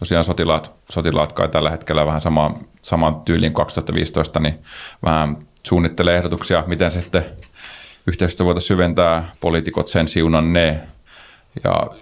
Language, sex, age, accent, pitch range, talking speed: Finnish, male, 30-49, native, 80-90 Hz, 115 wpm